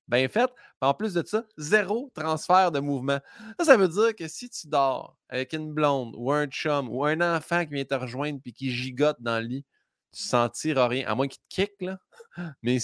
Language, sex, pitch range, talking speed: French, male, 135-225 Hz, 225 wpm